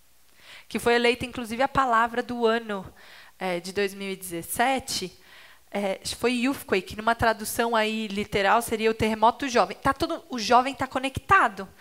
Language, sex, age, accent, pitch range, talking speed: Portuguese, female, 20-39, Brazilian, 210-260 Hz, 150 wpm